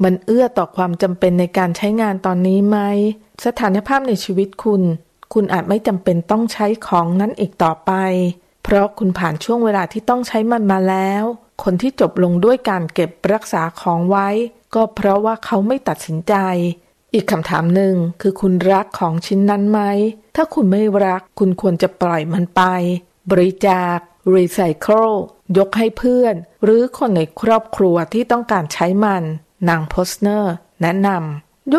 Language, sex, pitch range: Thai, female, 175-220 Hz